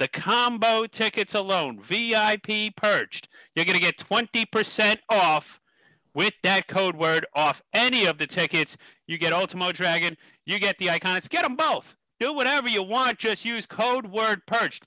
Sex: male